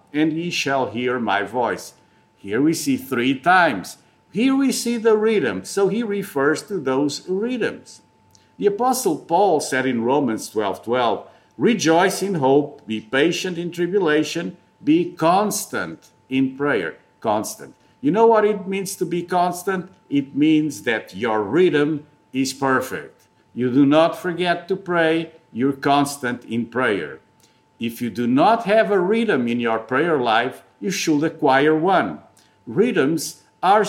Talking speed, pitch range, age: 150 wpm, 130-185 Hz, 50-69